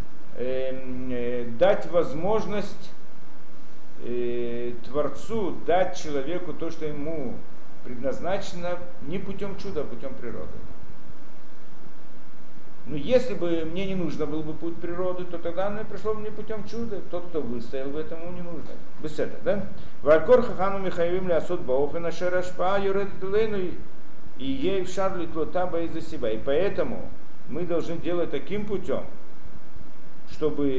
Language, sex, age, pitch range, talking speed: Russian, male, 50-69, 145-190 Hz, 115 wpm